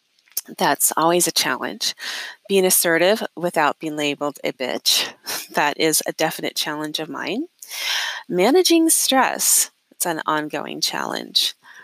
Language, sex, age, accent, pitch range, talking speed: English, female, 30-49, American, 165-230 Hz, 120 wpm